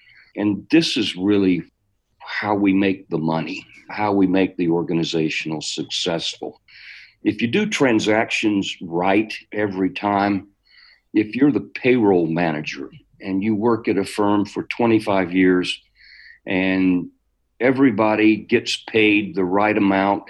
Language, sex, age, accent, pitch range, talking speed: English, male, 50-69, American, 95-110 Hz, 125 wpm